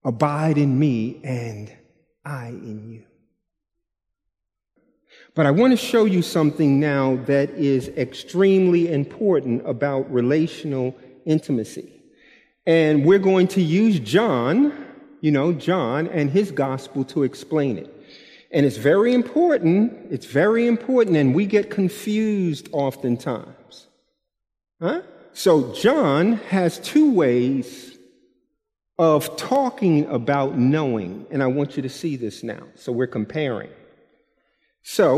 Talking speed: 120 wpm